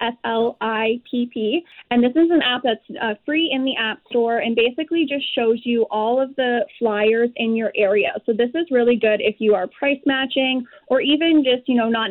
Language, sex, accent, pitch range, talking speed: English, female, American, 215-245 Hz, 205 wpm